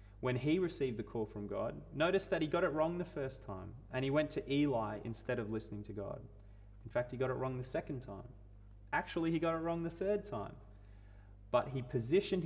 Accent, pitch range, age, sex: Australian, 100-145 Hz, 20-39, male